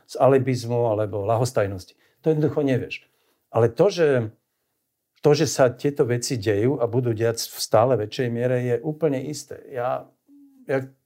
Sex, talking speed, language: male, 145 wpm, Slovak